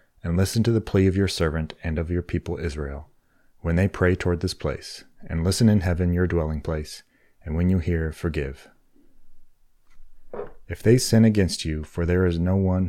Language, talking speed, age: English, 190 wpm, 30-49